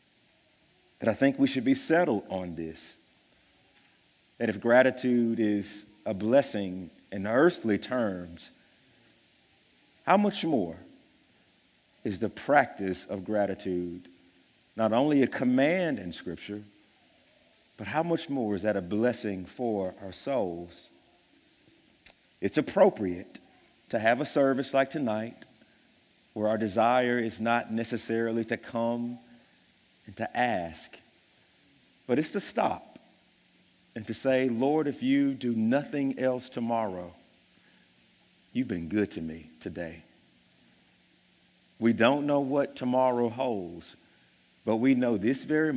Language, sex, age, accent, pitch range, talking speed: English, male, 50-69, American, 95-130 Hz, 120 wpm